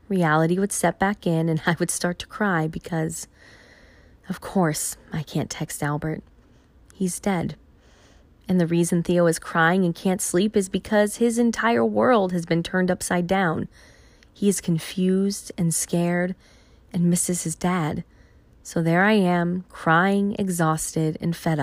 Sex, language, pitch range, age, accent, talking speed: female, English, 160-190 Hz, 20-39, American, 155 wpm